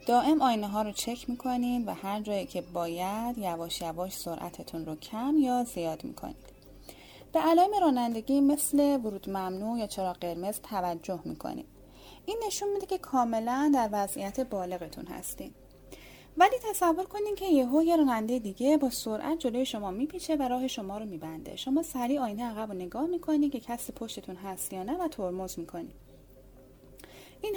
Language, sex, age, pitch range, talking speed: Persian, female, 10-29, 195-295 Hz, 160 wpm